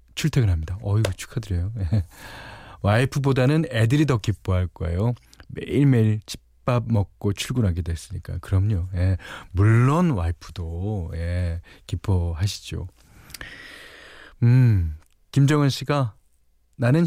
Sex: male